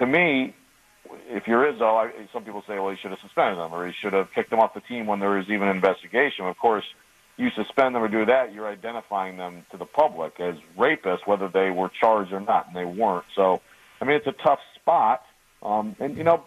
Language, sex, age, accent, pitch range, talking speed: English, male, 50-69, American, 95-135 Hz, 235 wpm